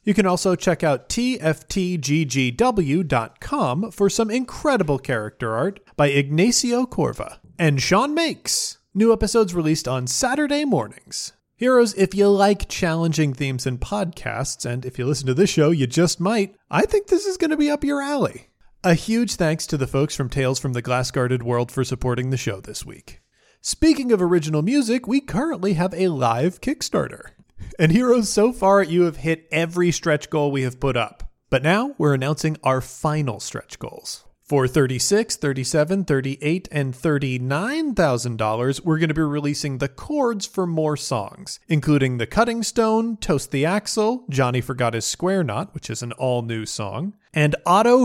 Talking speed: 175 wpm